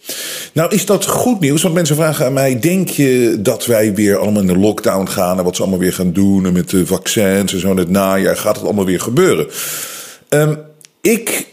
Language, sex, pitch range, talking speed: Dutch, male, 115-165 Hz, 215 wpm